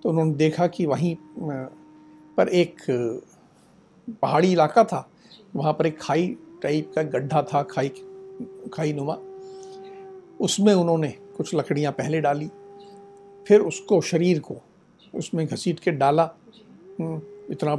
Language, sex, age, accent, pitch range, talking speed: Hindi, male, 60-79, native, 155-220 Hz, 120 wpm